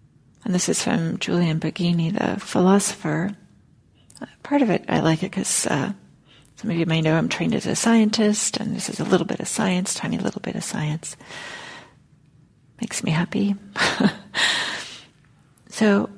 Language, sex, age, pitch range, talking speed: English, female, 40-59, 170-220 Hz, 160 wpm